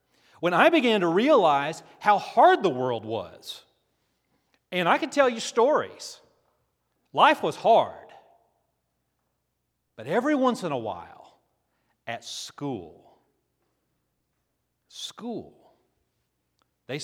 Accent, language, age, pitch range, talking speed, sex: American, English, 40-59, 120-180 Hz, 100 wpm, male